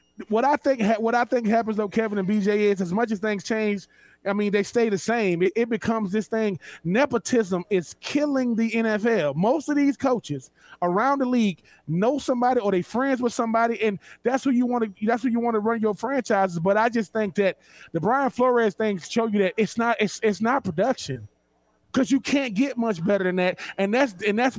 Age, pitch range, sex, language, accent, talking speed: 20-39, 190-245 Hz, male, English, American, 220 wpm